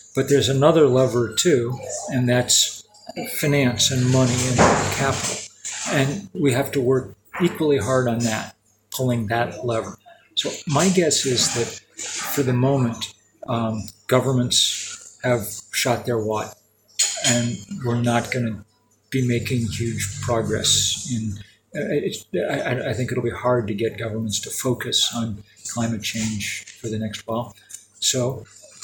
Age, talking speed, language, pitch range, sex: 40-59, 140 wpm, English, 110-130 Hz, male